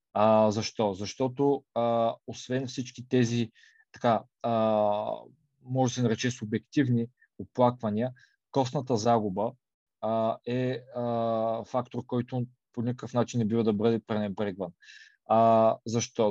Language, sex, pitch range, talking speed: Bulgarian, male, 110-125 Hz, 120 wpm